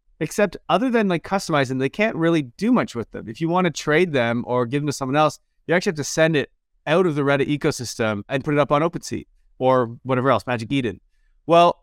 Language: English